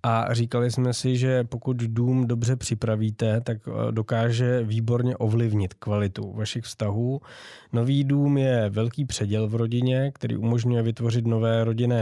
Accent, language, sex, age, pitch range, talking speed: native, Czech, male, 20-39, 110-125 Hz, 140 wpm